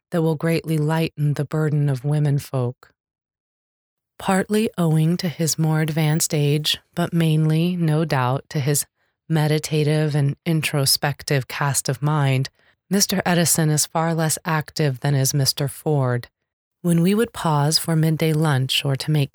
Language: English